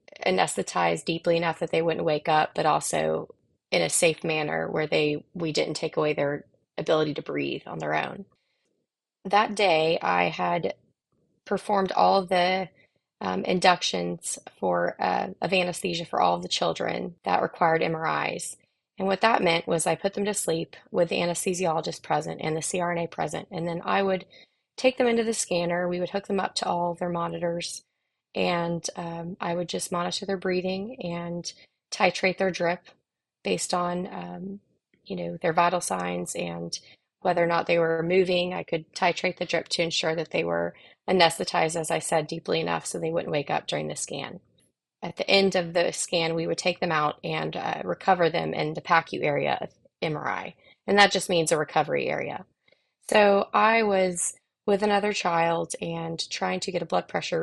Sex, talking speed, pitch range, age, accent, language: female, 185 wpm, 160-185 Hz, 20-39, American, English